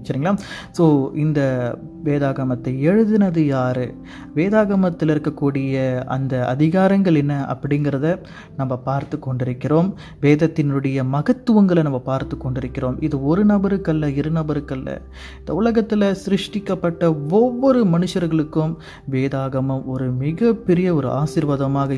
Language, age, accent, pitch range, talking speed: Tamil, 30-49, native, 135-165 Hz, 95 wpm